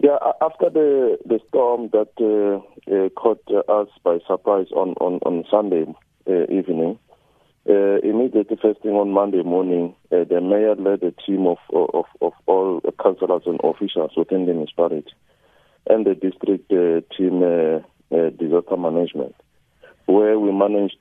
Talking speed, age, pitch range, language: 150 wpm, 50-69, 90-100 Hz, English